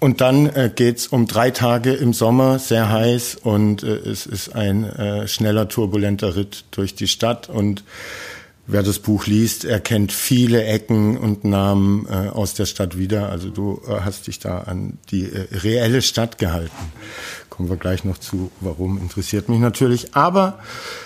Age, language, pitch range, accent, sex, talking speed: 50-69, German, 100-120 Hz, German, male, 155 wpm